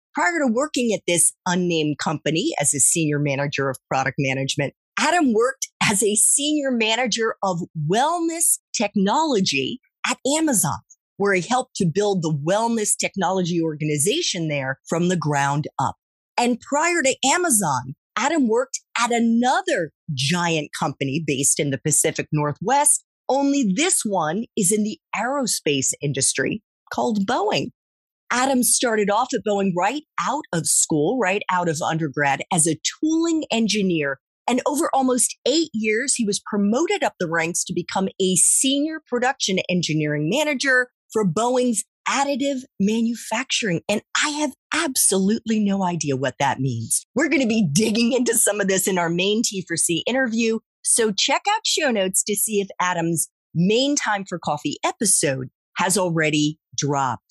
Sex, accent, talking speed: female, American, 150 wpm